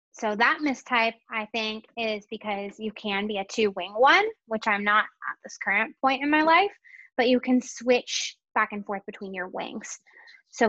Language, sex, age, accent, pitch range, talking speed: English, female, 10-29, American, 205-270 Hz, 190 wpm